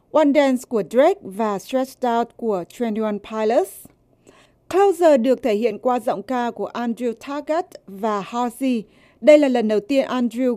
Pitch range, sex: 220-290 Hz, female